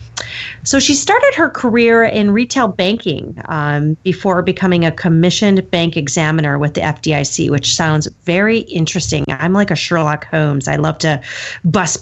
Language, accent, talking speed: English, American, 155 wpm